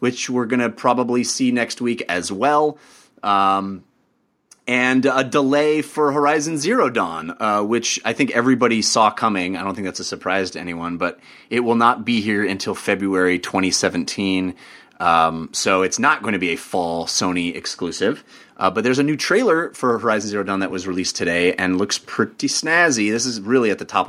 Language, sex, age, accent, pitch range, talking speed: English, male, 30-49, American, 95-140 Hz, 190 wpm